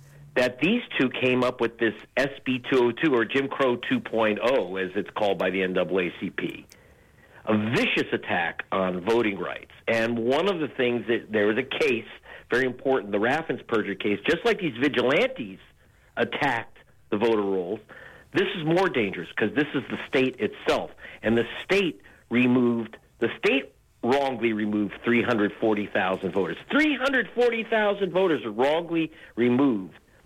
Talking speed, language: 145 wpm, English